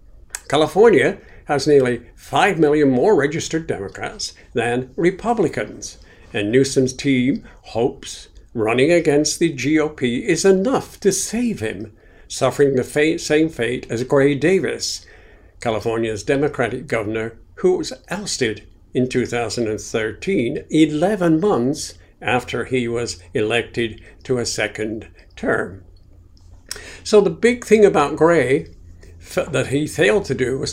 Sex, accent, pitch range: male, American, 110-145 Hz